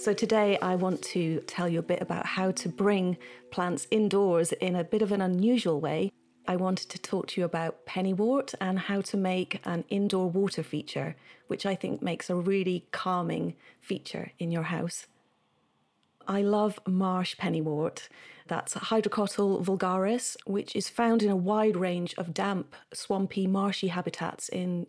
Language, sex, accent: English, female, British